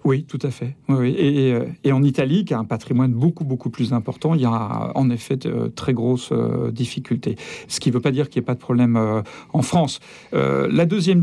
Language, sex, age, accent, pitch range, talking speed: French, male, 50-69, French, 115-140 Hz, 235 wpm